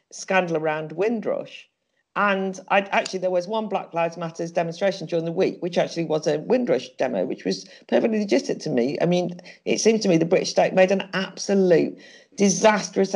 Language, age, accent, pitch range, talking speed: English, 50-69, British, 170-215 Hz, 185 wpm